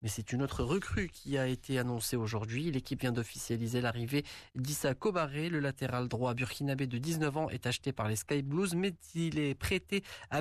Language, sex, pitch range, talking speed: Arabic, male, 120-160 Hz, 195 wpm